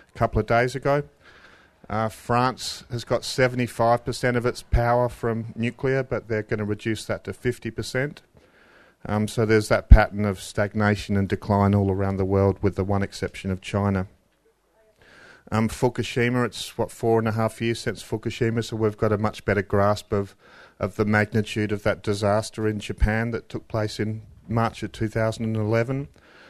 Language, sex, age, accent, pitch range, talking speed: English, male, 40-59, Australian, 100-115 Hz, 175 wpm